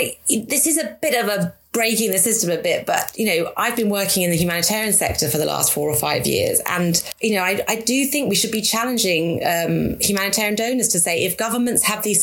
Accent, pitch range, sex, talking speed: British, 170-215 Hz, female, 235 wpm